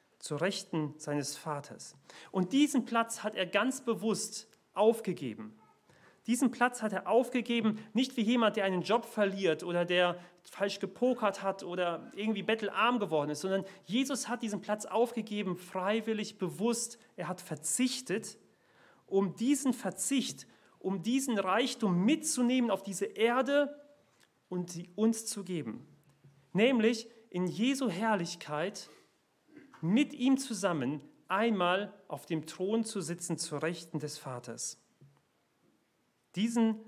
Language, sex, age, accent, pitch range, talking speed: German, male, 40-59, German, 170-225 Hz, 125 wpm